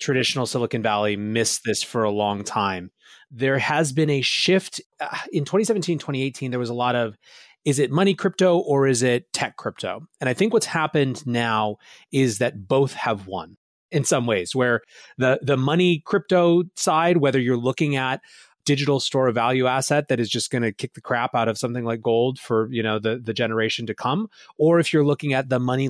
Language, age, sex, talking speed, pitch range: English, 30-49, male, 205 wpm, 110-145 Hz